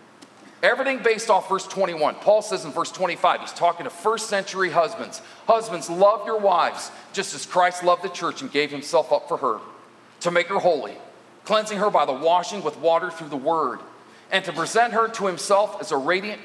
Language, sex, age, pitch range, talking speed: English, male, 40-59, 180-225 Hz, 200 wpm